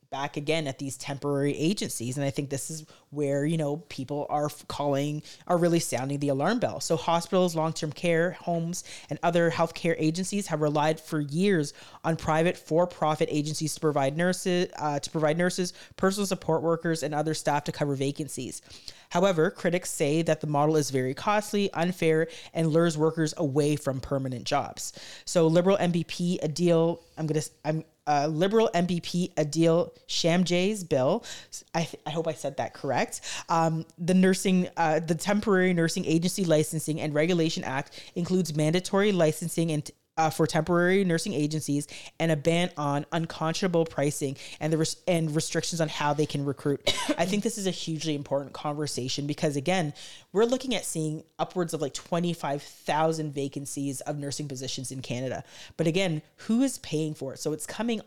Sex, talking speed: female, 175 wpm